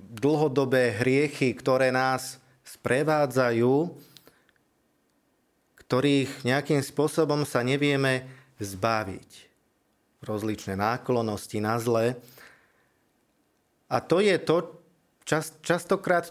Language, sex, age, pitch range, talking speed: Slovak, male, 40-59, 115-150 Hz, 75 wpm